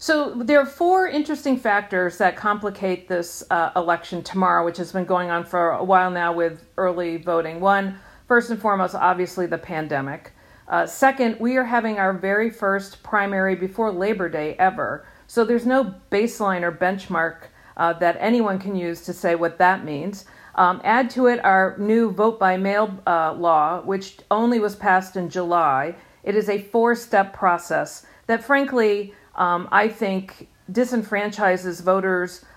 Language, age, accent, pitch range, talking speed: English, 50-69, American, 180-225 Hz, 165 wpm